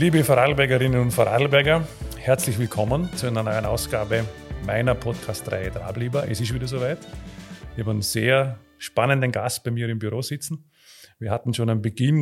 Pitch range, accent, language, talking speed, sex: 110-130 Hz, Austrian, German, 160 wpm, male